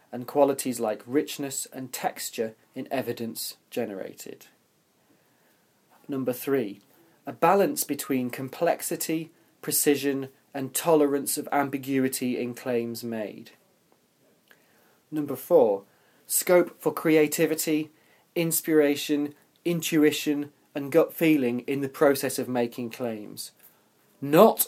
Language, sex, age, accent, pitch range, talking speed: English, male, 30-49, British, 120-145 Hz, 95 wpm